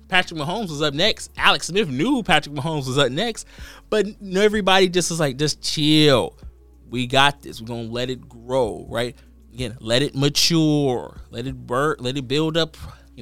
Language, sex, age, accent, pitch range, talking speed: English, male, 20-39, American, 115-150 Hz, 190 wpm